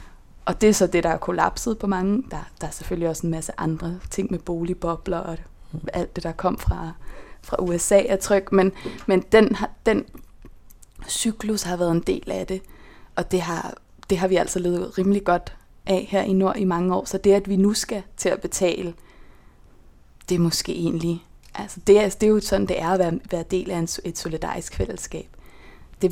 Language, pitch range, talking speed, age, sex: Danish, 170-195 Hz, 205 wpm, 20-39, female